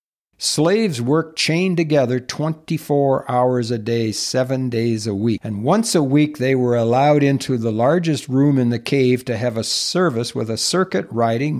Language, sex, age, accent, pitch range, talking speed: English, male, 60-79, American, 115-150 Hz, 175 wpm